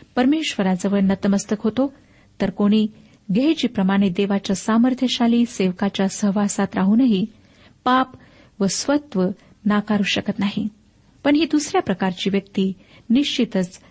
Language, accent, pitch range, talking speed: Marathi, native, 200-245 Hz, 100 wpm